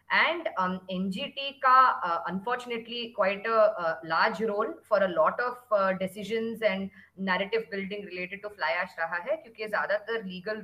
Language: Hindi